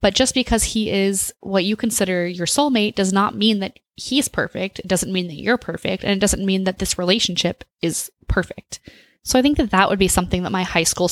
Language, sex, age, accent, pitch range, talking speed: English, female, 20-39, American, 175-210 Hz, 230 wpm